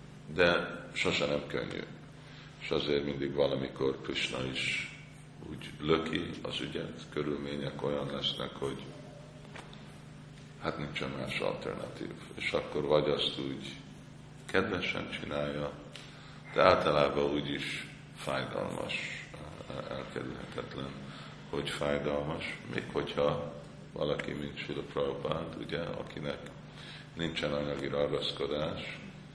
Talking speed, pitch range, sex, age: 95 wpm, 70-75 Hz, male, 50-69